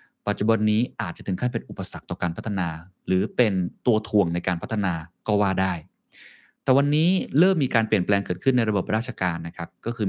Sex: male